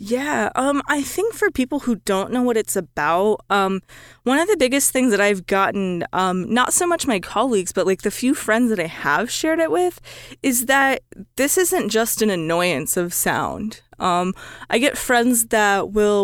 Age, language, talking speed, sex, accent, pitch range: 20-39, English, 195 wpm, female, American, 190-250 Hz